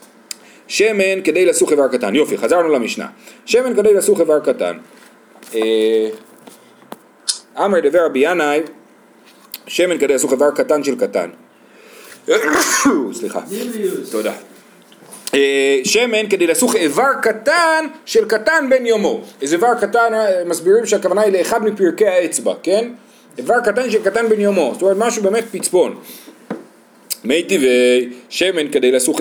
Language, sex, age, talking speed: Hebrew, male, 40-59, 120 wpm